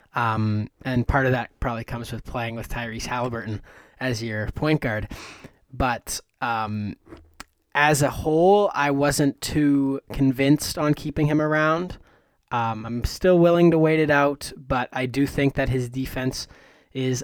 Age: 20-39